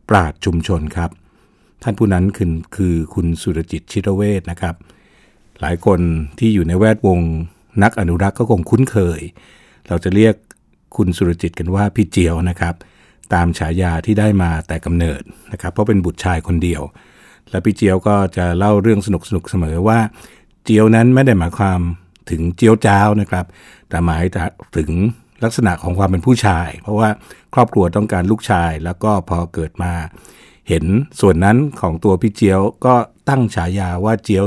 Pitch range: 85-105 Hz